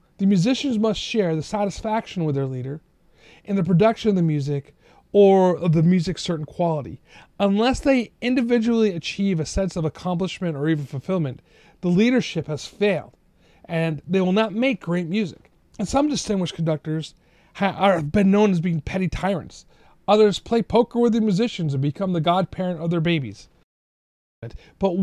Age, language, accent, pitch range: 40-59, English, American, 150-195 Hz